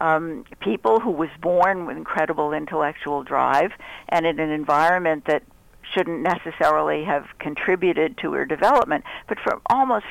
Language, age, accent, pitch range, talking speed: English, 60-79, American, 155-205 Hz, 140 wpm